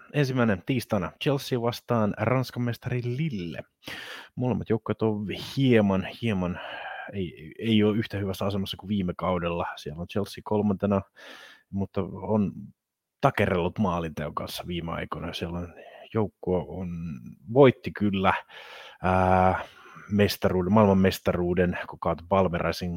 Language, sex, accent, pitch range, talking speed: Finnish, male, native, 85-105 Hz, 110 wpm